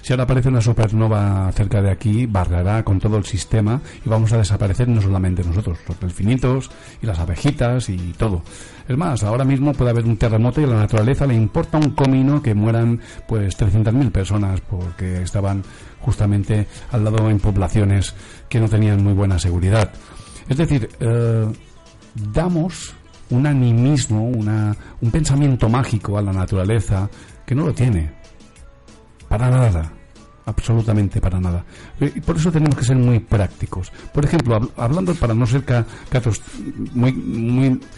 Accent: Spanish